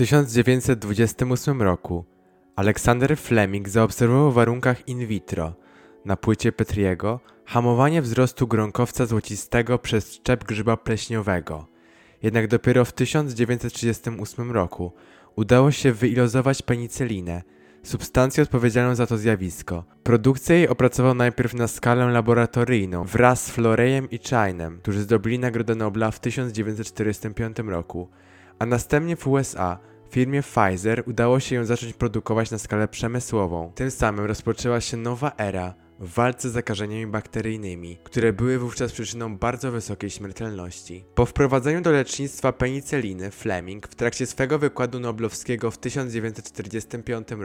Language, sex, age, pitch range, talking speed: Polish, male, 20-39, 100-125 Hz, 125 wpm